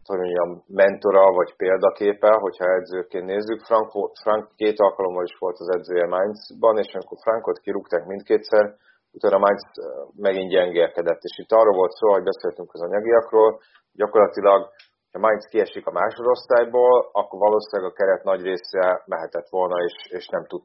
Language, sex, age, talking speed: Hungarian, male, 30-49, 155 wpm